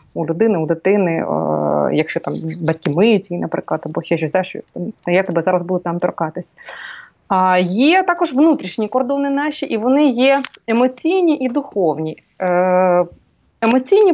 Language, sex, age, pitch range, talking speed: Ukrainian, female, 20-39, 190-255 Hz, 130 wpm